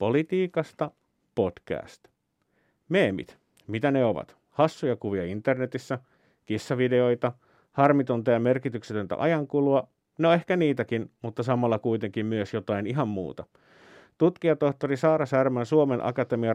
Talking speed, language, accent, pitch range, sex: 105 wpm, Finnish, native, 115-140 Hz, male